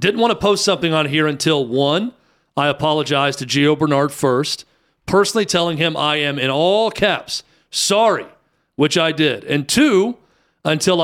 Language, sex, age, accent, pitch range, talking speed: English, male, 40-59, American, 145-185 Hz, 165 wpm